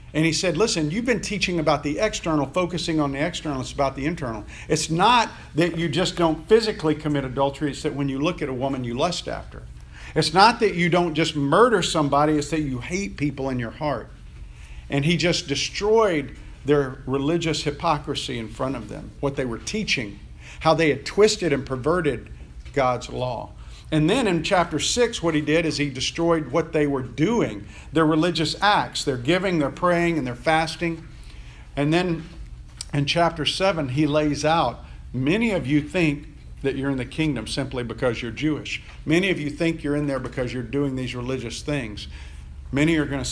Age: 50-69